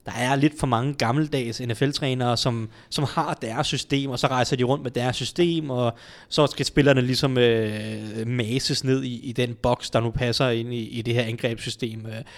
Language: Danish